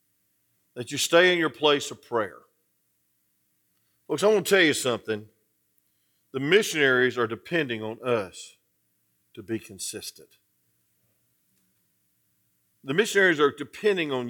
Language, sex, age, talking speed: English, male, 50-69, 120 wpm